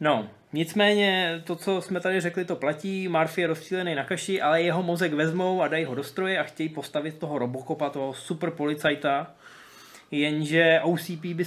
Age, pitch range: 20-39, 145-175 Hz